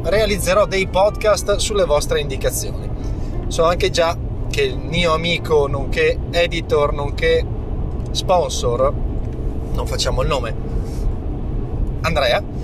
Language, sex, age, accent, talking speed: Italian, male, 30-49, native, 105 wpm